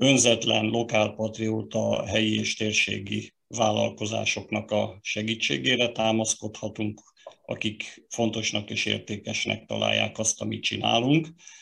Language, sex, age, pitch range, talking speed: Hungarian, male, 50-69, 105-115 Hz, 95 wpm